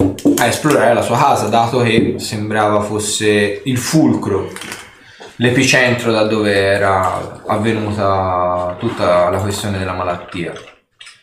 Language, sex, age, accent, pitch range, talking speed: Italian, male, 20-39, native, 105-130 Hz, 110 wpm